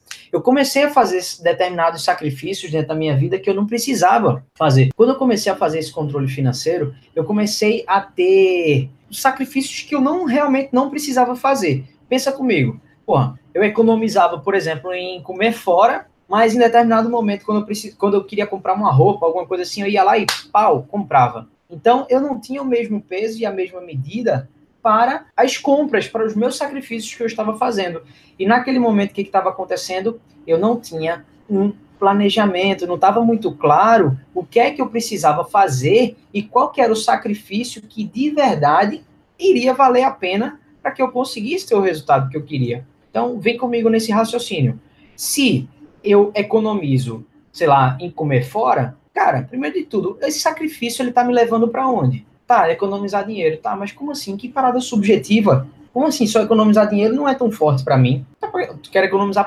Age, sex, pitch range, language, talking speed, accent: 20-39, male, 175-245 Hz, Portuguese, 185 wpm, Brazilian